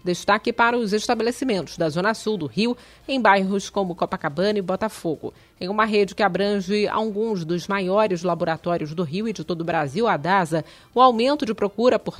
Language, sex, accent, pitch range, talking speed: Portuguese, female, Brazilian, 185-225 Hz, 185 wpm